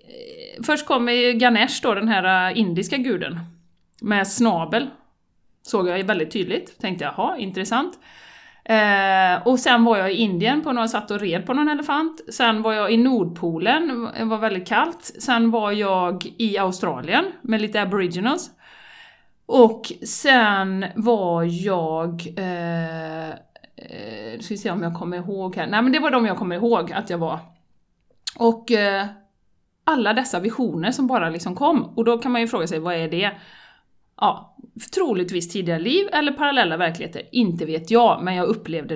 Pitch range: 175-240 Hz